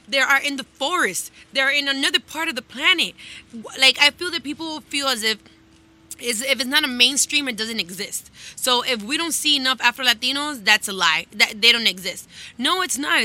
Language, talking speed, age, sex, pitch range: English, 215 wpm, 20-39, female, 215-275 Hz